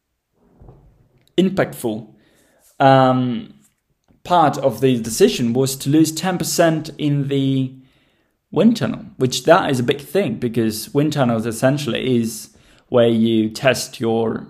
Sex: male